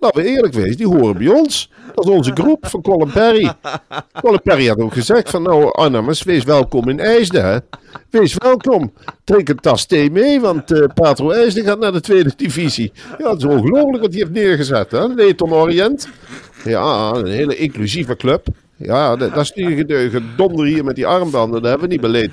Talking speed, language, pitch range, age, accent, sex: 205 wpm, Dutch, 100-160 Hz, 50-69, Dutch, male